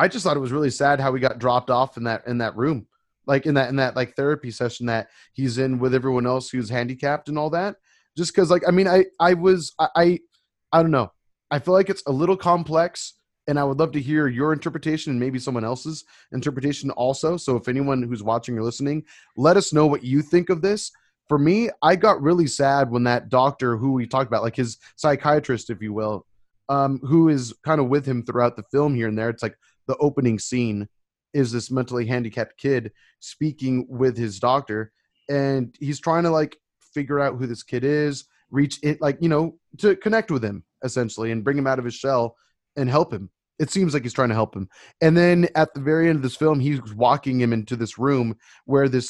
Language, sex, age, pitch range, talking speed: English, male, 20-39, 125-160 Hz, 230 wpm